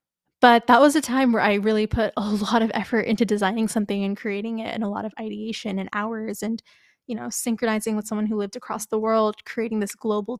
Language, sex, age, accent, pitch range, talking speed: English, female, 10-29, American, 210-235 Hz, 230 wpm